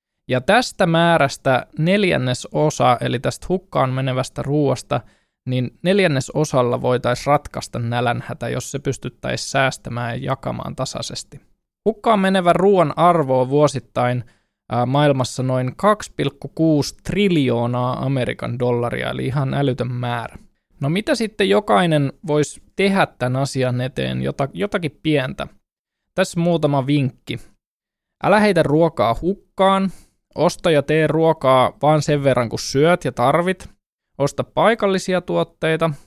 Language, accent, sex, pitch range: Finnish, native, male, 125-165 Hz